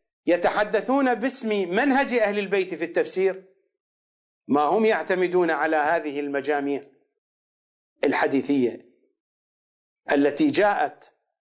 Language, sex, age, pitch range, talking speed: English, male, 50-69, 170-265 Hz, 85 wpm